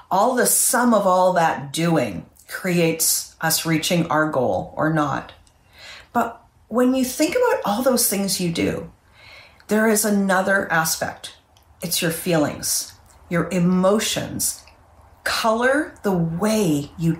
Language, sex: English, female